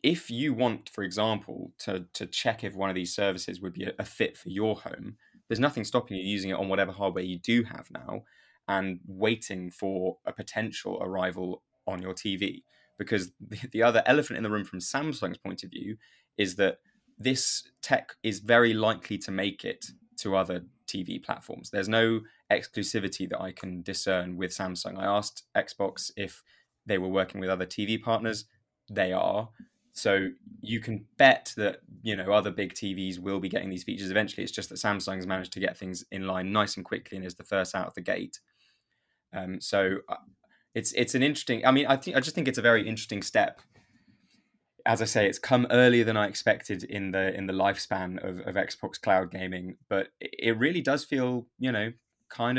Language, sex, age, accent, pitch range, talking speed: English, male, 20-39, British, 95-115 Hz, 200 wpm